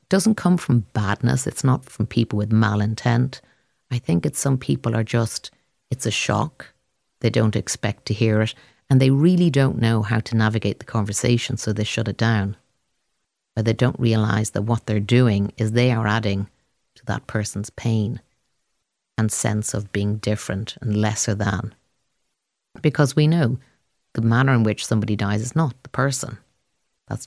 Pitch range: 105-130 Hz